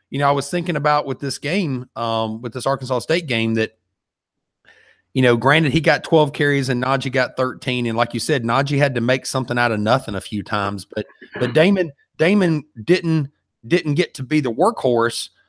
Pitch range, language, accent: 120-150 Hz, English, American